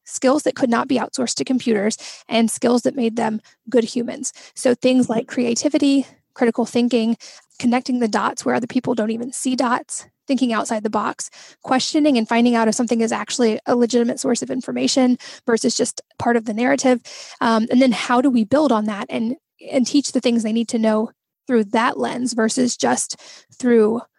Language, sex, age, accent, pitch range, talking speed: English, female, 10-29, American, 230-260 Hz, 195 wpm